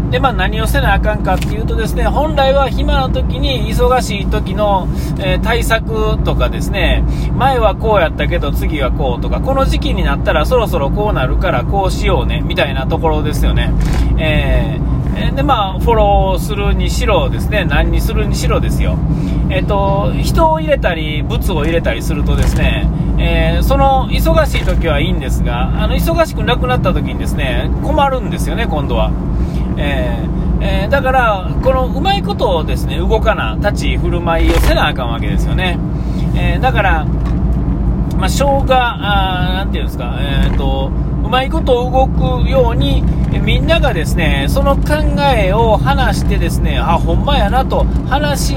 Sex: male